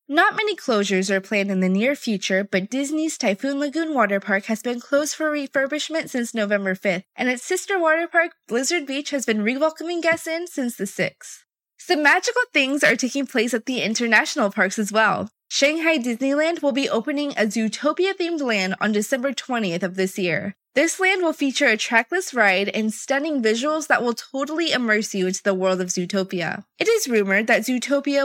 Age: 20-39